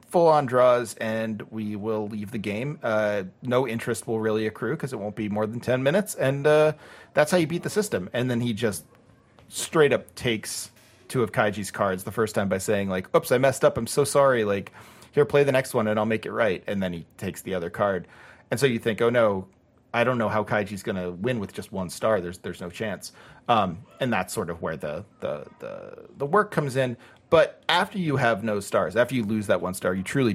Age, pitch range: 40-59, 100-125 Hz